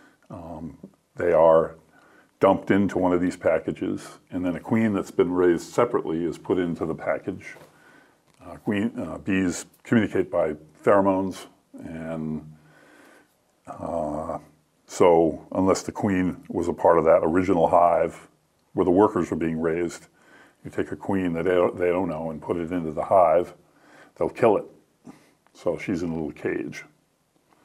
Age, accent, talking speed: 50-69, American, 155 wpm